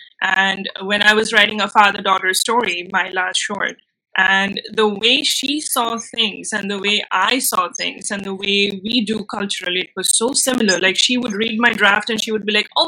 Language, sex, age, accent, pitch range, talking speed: English, female, 20-39, Indian, 195-235 Hz, 210 wpm